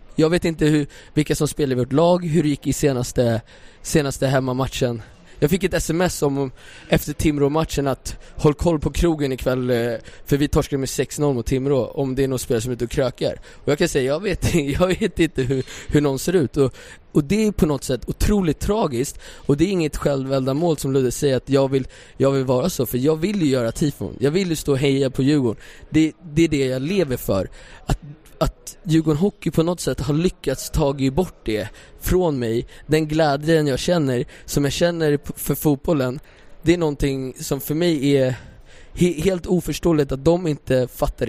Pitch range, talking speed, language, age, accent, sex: 135-165 Hz, 210 wpm, English, 20-39, Swedish, male